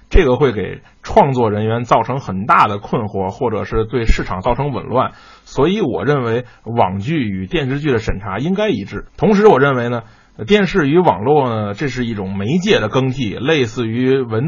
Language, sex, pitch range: Chinese, male, 115-160 Hz